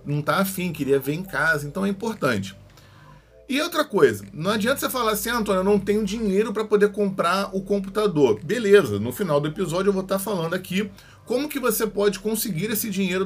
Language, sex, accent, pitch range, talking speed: Portuguese, male, Brazilian, 125-200 Hz, 210 wpm